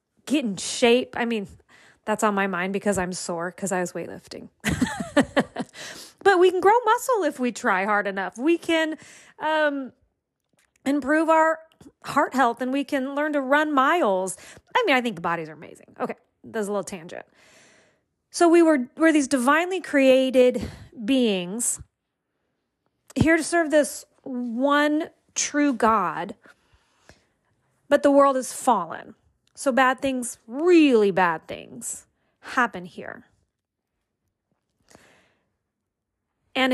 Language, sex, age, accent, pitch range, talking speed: English, female, 30-49, American, 220-300 Hz, 135 wpm